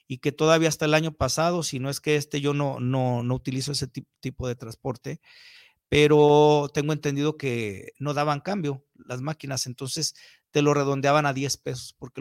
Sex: male